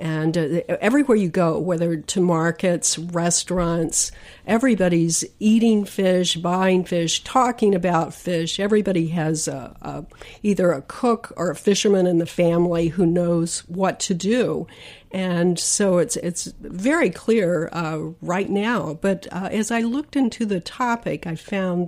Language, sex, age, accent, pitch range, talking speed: English, female, 50-69, American, 160-190 Hz, 150 wpm